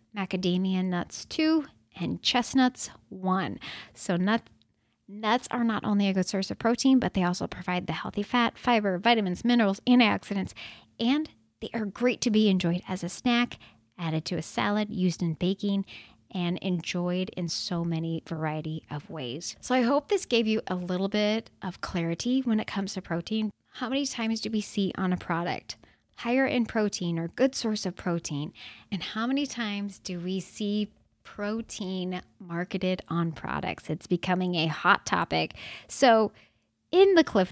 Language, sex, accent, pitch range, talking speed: English, female, American, 175-230 Hz, 170 wpm